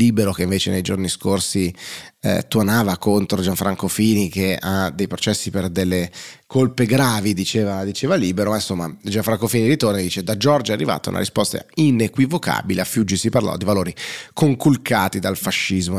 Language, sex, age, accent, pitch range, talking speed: Italian, male, 30-49, native, 95-115 Hz, 165 wpm